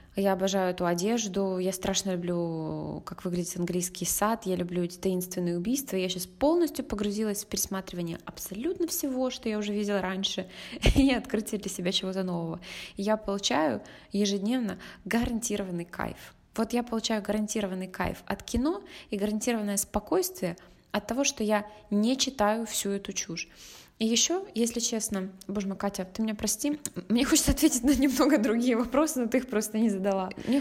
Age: 20-39